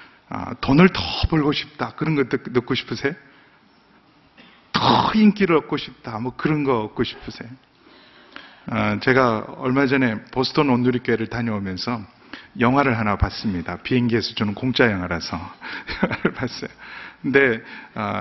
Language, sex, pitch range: Korean, male, 120-160 Hz